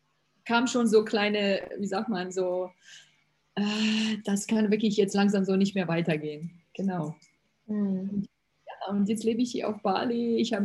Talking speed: 160 wpm